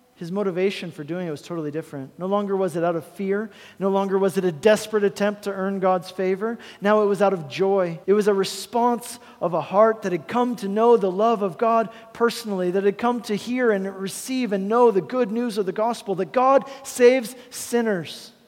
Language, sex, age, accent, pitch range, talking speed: English, male, 40-59, American, 155-195 Hz, 220 wpm